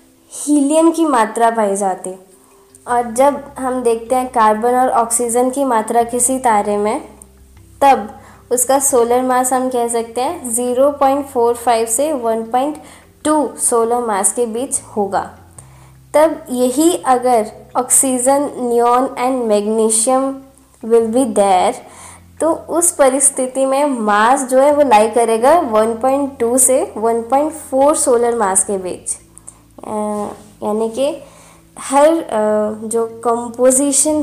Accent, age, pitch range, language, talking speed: native, 20-39, 220-275 Hz, Hindi, 120 wpm